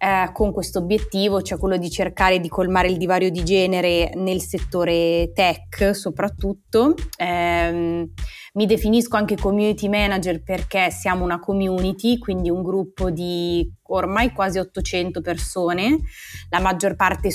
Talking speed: 135 wpm